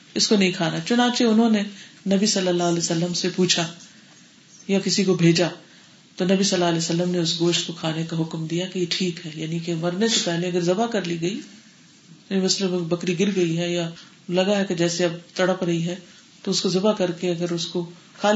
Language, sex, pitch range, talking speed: Urdu, female, 170-215 Hz, 230 wpm